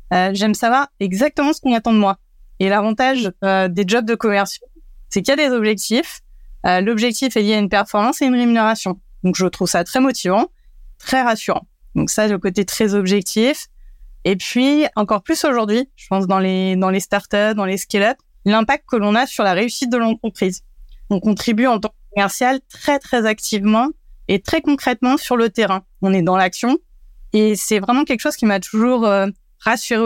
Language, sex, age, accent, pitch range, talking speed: French, female, 20-39, French, 195-240 Hz, 200 wpm